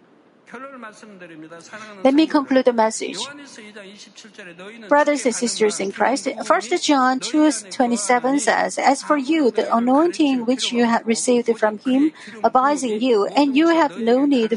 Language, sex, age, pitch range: Korean, female, 50-69, 230-300 Hz